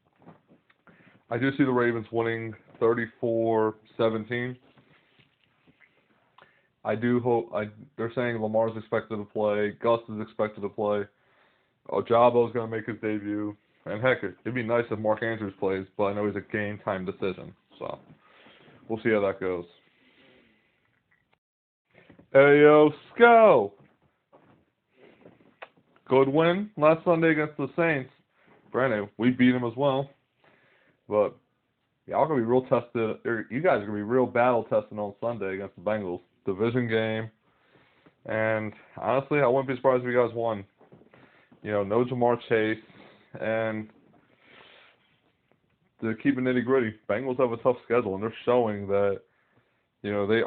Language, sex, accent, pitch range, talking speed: English, male, American, 105-125 Hz, 145 wpm